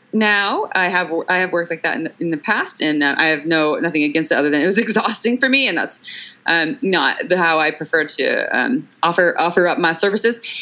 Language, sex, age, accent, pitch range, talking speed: English, female, 20-39, American, 160-225 Hz, 230 wpm